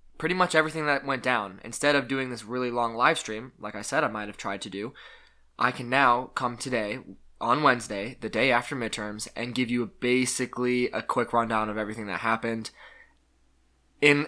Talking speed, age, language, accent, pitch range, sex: 195 wpm, 20-39, English, American, 110-130 Hz, male